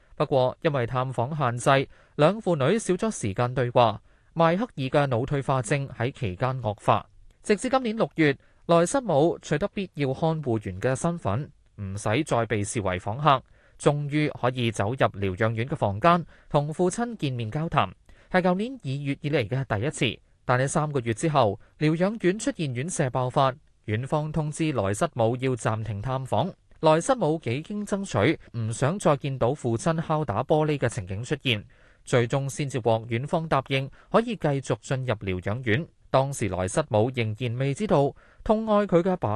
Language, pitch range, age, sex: Chinese, 115-160 Hz, 20-39, male